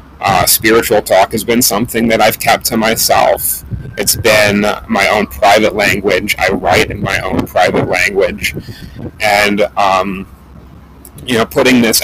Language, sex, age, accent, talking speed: English, male, 30-49, American, 150 wpm